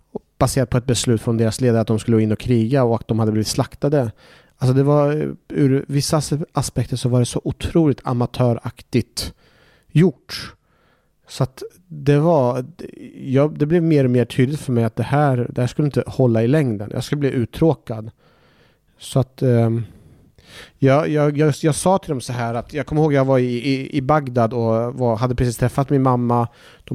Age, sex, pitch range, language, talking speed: 30-49, male, 115-140 Hz, Swedish, 195 wpm